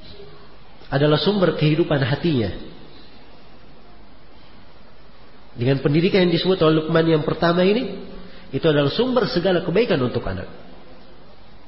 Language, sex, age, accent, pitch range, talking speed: Indonesian, male, 40-59, native, 155-220 Hz, 105 wpm